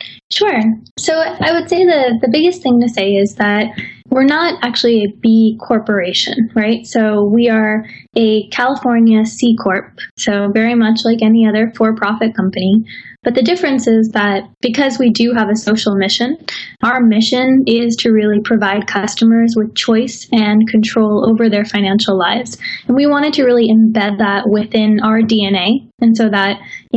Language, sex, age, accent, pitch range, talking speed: English, female, 10-29, American, 210-240 Hz, 170 wpm